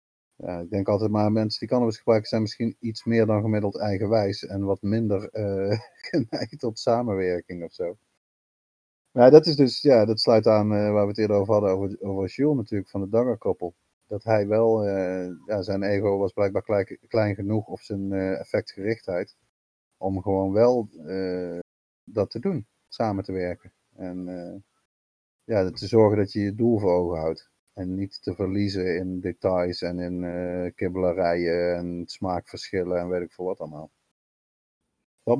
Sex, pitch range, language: male, 95-120 Hz, Dutch